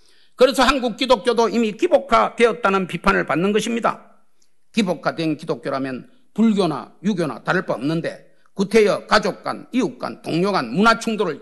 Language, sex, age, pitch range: Korean, male, 40-59, 170-240 Hz